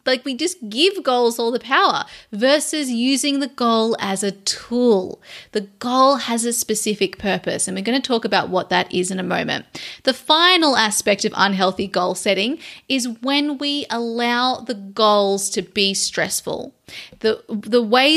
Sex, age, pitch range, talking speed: female, 30-49, 205-265 Hz, 170 wpm